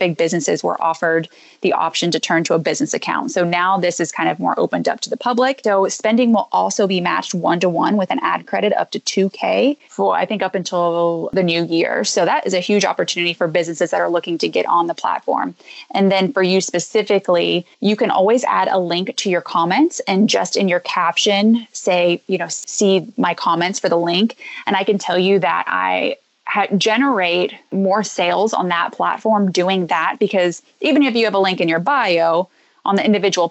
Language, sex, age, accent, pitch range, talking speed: English, female, 20-39, American, 175-205 Hz, 215 wpm